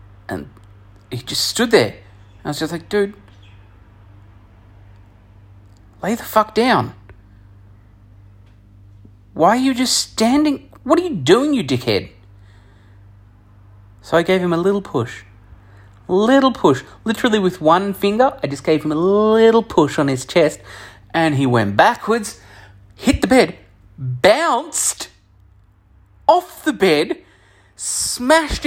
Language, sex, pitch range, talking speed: English, male, 100-155 Hz, 130 wpm